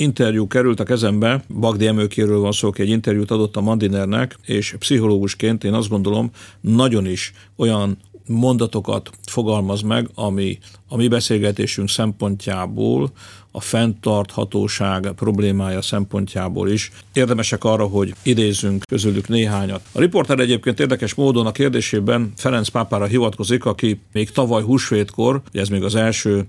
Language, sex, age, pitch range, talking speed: Hungarian, male, 50-69, 100-115 Hz, 130 wpm